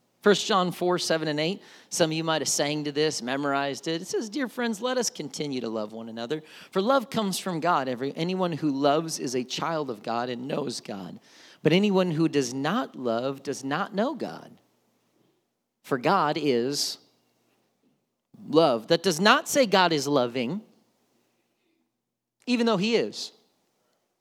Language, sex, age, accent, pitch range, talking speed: English, male, 40-59, American, 155-225 Hz, 170 wpm